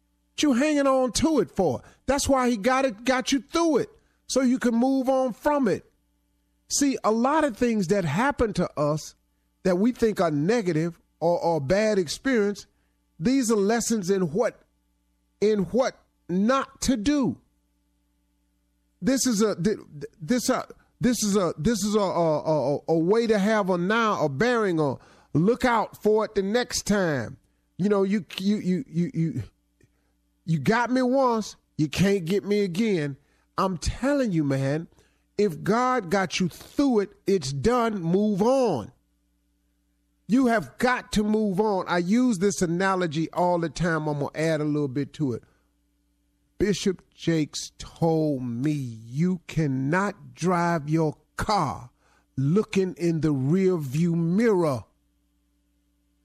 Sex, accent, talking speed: male, American, 155 wpm